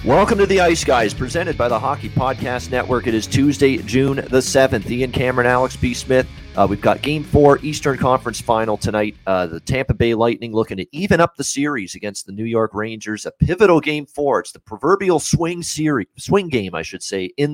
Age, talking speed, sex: 40-59, 210 wpm, male